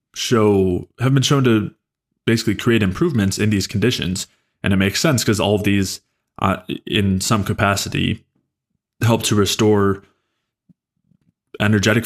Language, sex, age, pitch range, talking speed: English, male, 20-39, 95-105 Hz, 135 wpm